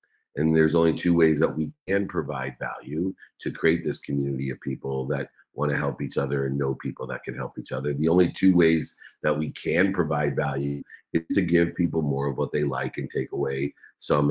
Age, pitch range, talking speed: 50-69, 70-85 Hz, 220 wpm